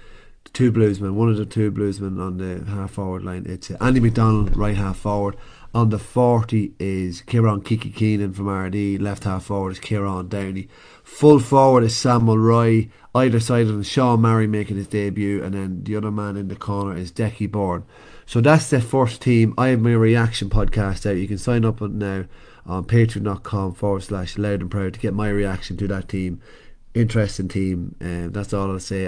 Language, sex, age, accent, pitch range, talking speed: English, male, 30-49, Irish, 95-110 Hz, 200 wpm